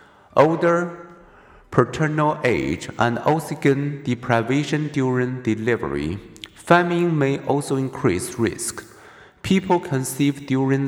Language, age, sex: Chinese, 50-69, male